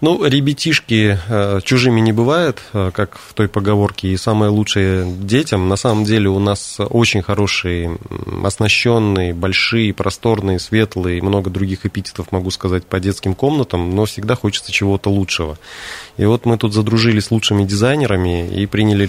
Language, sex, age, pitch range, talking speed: Russian, male, 20-39, 95-110 Hz, 150 wpm